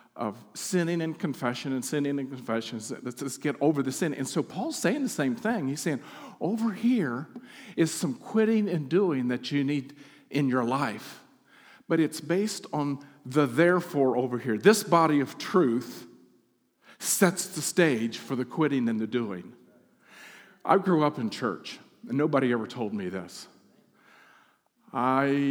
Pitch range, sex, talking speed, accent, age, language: 120-160 Hz, male, 160 wpm, American, 50-69, English